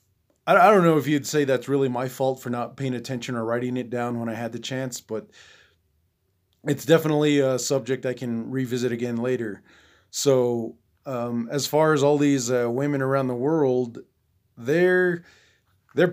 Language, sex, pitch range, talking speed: English, male, 115-140 Hz, 175 wpm